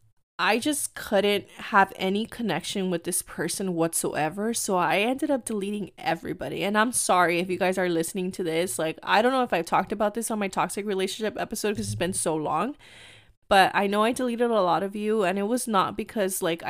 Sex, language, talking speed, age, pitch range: female, English, 215 wpm, 20-39, 175-215 Hz